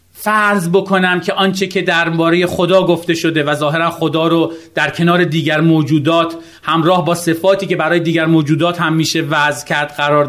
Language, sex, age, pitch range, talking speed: Persian, male, 40-59, 160-245 Hz, 170 wpm